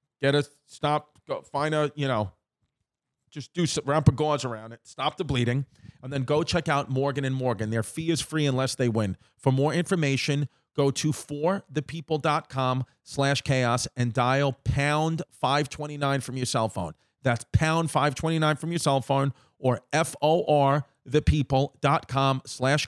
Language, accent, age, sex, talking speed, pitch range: English, American, 40-59, male, 155 wpm, 130-160 Hz